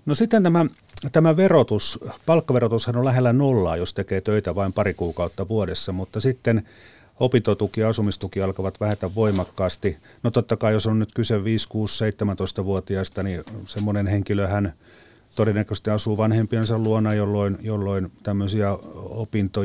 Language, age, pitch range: Finnish, 40-59, 95-115 Hz